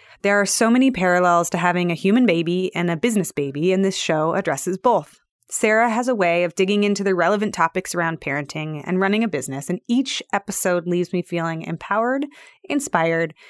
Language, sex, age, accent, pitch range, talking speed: English, female, 20-39, American, 170-210 Hz, 190 wpm